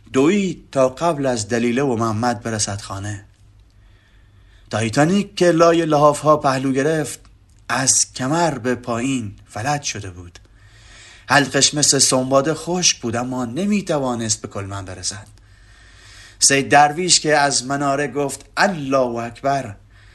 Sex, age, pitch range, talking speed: male, 30-49, 110-150 Hz, 125 wpm